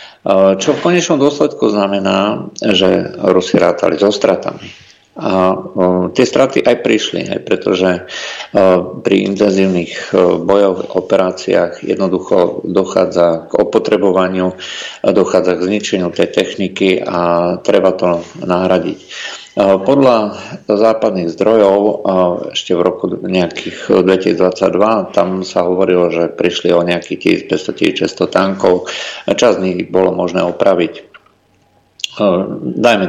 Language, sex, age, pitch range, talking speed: Slovak, male, 50-69, 90-100 Hz, 105 wpm